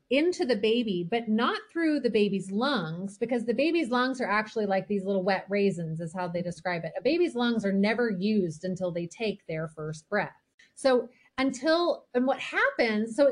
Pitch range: 195-255 Hz